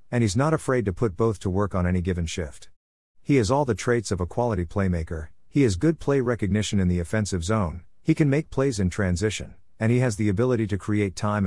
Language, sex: English, male